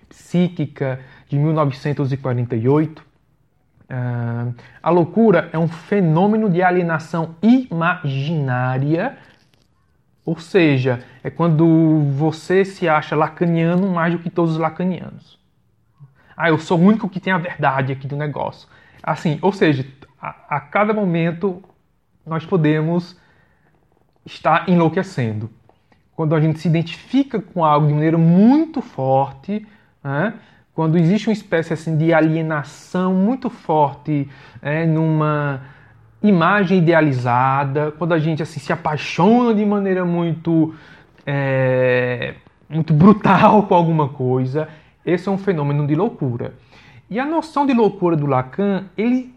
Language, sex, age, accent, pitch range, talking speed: Portuguese, male, 20-39, Brazilian, 145-195 Hz, 125 wpm